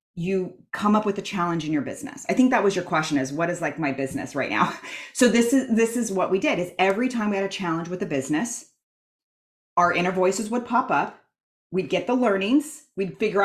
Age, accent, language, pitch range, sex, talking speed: 30-49, American, English, 165-225 Hz, female, 235 wpm